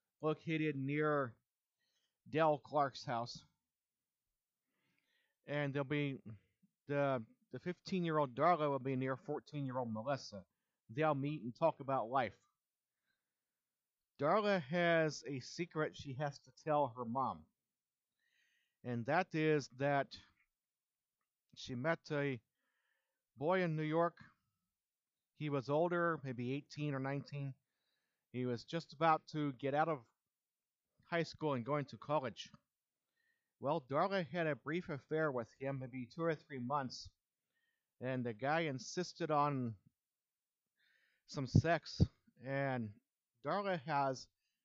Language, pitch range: English, 130-160 Hz